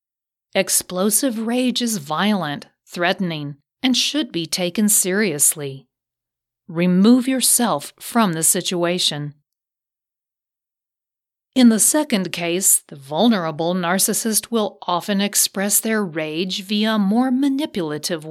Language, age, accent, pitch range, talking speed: English, 50-69, American, 170-220 Hz, 100 wpm